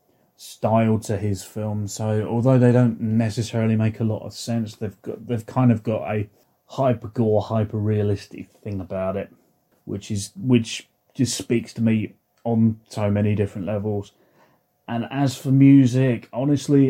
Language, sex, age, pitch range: English, male, 30-49, 105-125 Hz